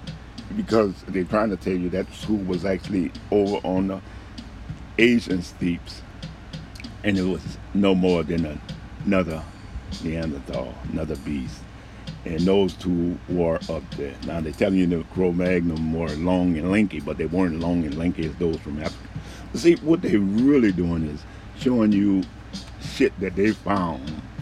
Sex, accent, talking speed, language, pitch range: male, American, 155 wpm, English, 85-105 Hz